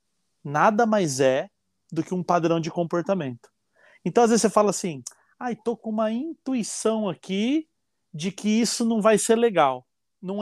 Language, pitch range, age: Portuguese, 165-195 Hz, 30-49